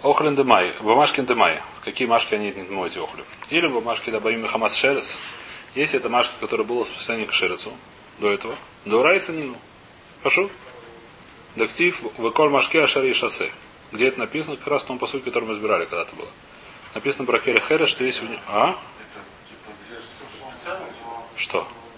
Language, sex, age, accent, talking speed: Russian, male, 30-49, native, 155 wpm